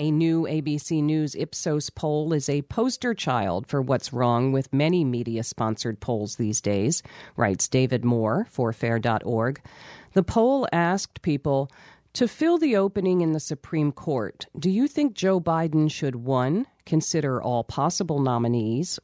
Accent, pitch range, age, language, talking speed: American, 125-185 Hz, 40-59, English, 150 wpm